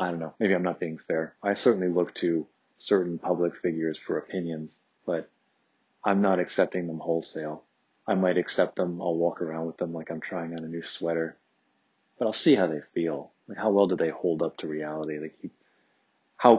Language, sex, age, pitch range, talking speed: English, male, 30-49, 80-90 Hz, 205 wpm